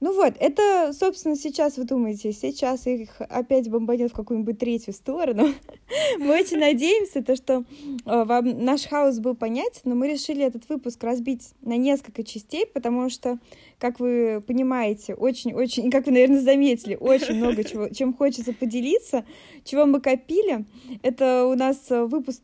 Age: 20-39